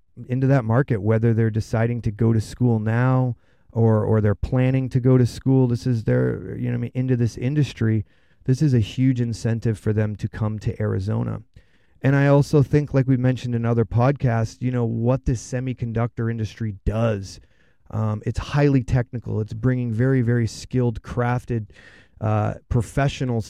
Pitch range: 110-130 Hz